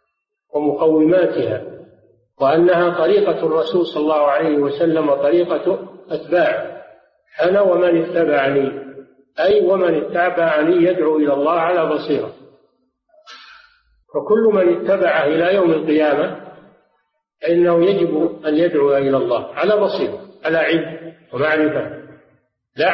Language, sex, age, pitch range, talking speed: Arabic, male, 50-69, 150-185 Hz, 100 wpm